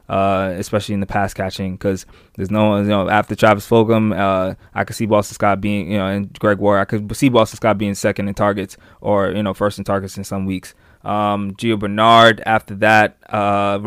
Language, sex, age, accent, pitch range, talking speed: English, male, 20-39, American, 100-110 Hz, 220 wpm